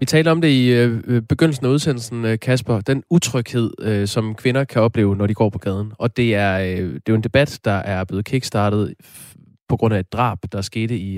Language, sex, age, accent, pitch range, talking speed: Danish, male, 20-39, native, 110-135 Hz, 215 wpm